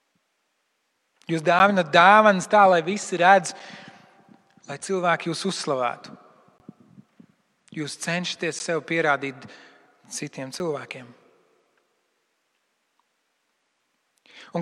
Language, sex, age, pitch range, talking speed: English, male, 40-59, 165-210 Hz, 75 wpm